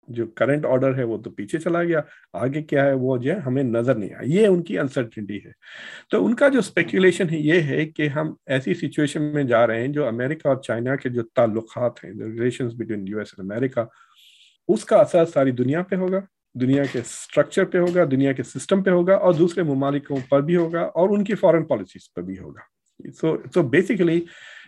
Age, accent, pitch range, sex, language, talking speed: 50-69, native, 115-155 Hz, male, Hindi, 180 wpm